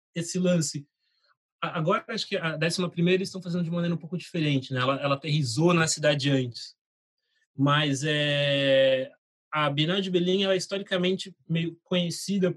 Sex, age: male, 20-39